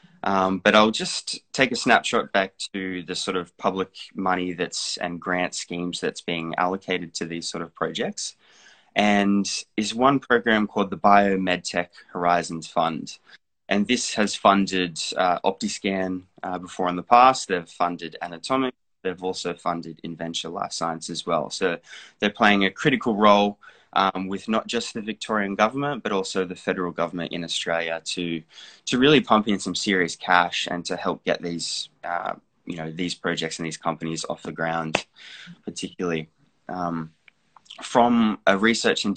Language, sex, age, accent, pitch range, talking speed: English, male, 20-39, Australian, 85-105 Hz, 165 wpm